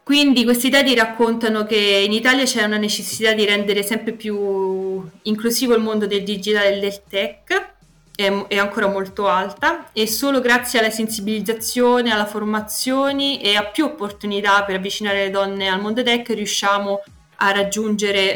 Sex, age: female, 20-39